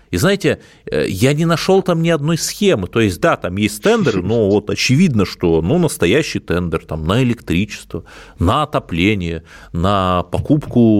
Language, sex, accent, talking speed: Russian, male, native, 160 wpm